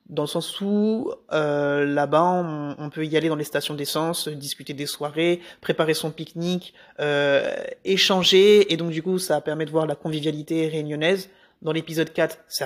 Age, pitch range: 20-39, 150-175 Hz